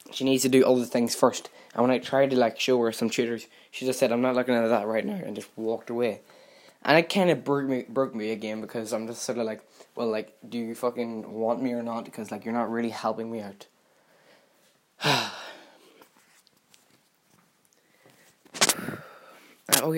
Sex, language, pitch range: male, English, 110-130 Hz